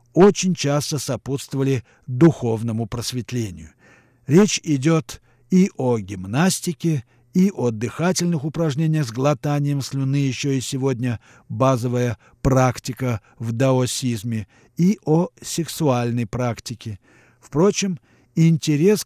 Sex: male